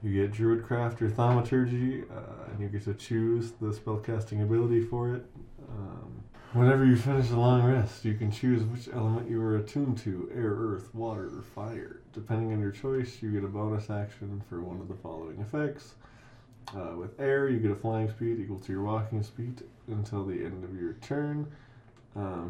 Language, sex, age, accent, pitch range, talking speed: English, male, 20-39, American, 105-120 Hz, 190 wpm